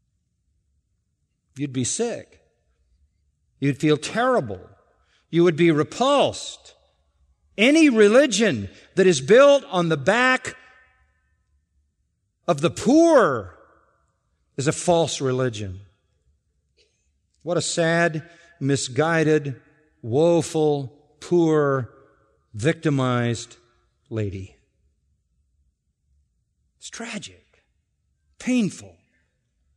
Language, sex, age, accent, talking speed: English, male, 50-69, American, 75 wpm